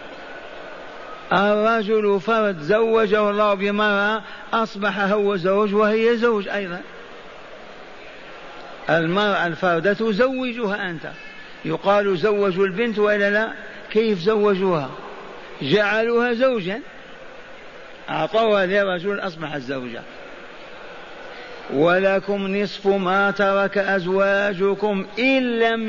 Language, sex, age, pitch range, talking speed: Arabic, male, 50-69, 180-215 Hz, 80 wpm